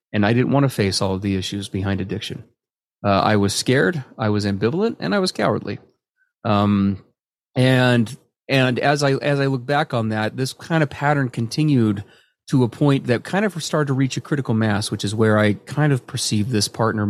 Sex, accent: male, American